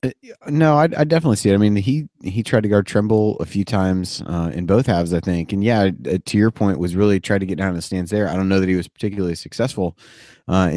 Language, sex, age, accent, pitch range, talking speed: English, male, 30-49, American, 85-100 Hz, 255 wpm